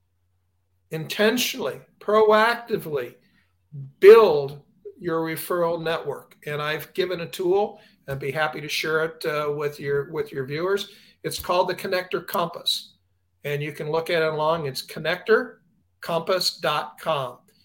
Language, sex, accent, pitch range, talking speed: English, male, American, 150-200 Hz, 125 wpm